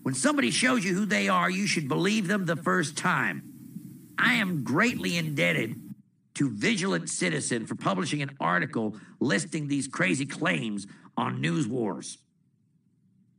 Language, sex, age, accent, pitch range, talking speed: English, male, 50-69, American, 140-205 Hz, 145 wpm